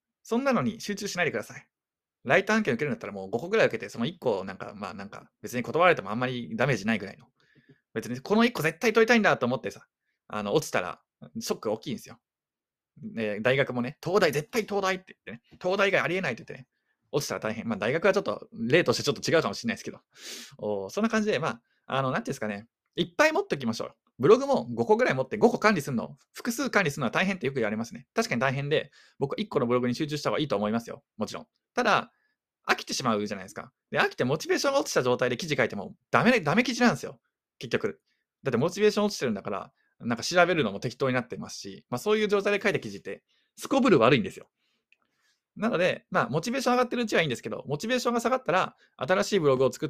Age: 20-39